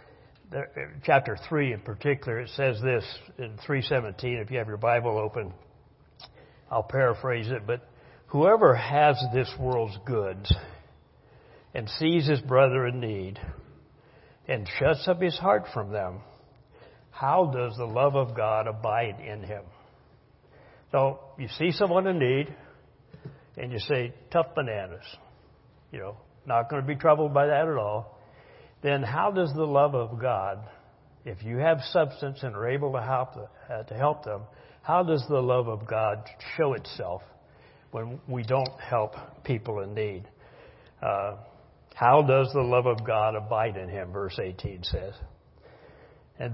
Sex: male